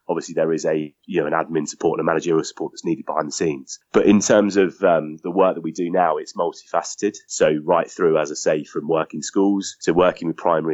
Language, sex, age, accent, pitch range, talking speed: English, male, 20-39, British, 85-95 Hz, 245 wpm